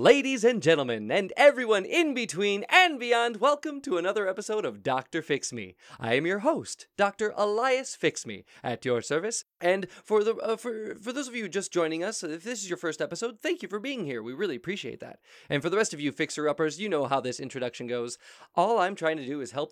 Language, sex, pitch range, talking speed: English, male, 140-220 Hz, 220 wpm